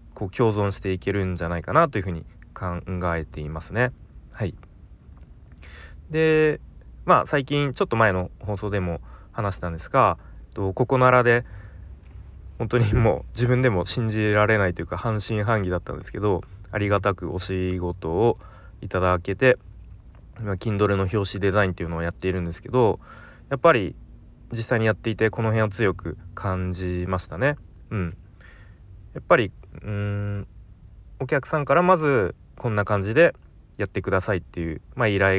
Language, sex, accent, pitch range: Japanese, male, native, 90-115 Hz